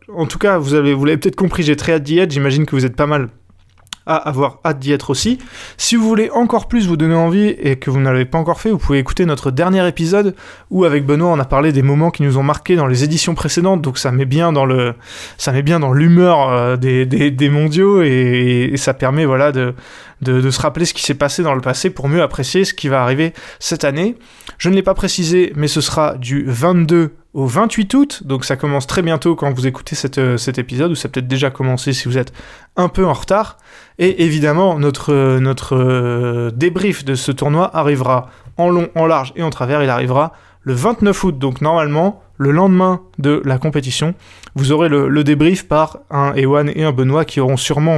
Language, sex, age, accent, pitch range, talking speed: French, male, 20-39, French, 135-175 Hz, 230 wpm